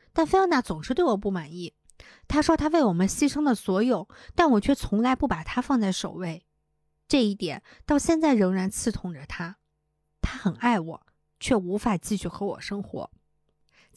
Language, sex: Chinese, female